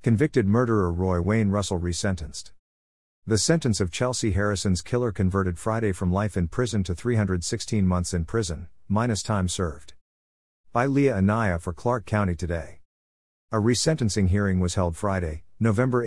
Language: English